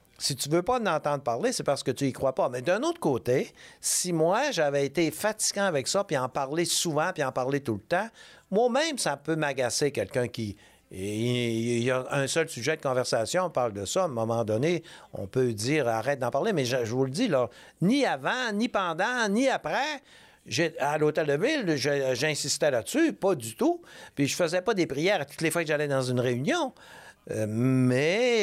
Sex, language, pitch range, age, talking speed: male, French, 130-180 Hz, 60-79, 215 wpm